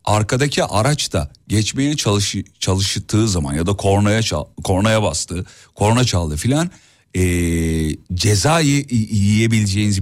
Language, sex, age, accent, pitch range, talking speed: Turkish, male, 40-59, native, 95-140 Hz, 115 wpm